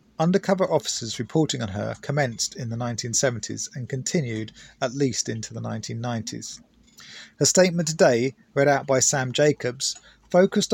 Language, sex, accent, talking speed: English, male, British, 140 wpm